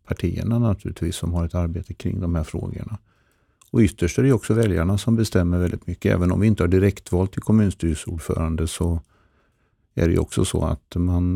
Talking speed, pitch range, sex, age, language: 190 wpm, 85-105 Hz, male, 50-69, Swedish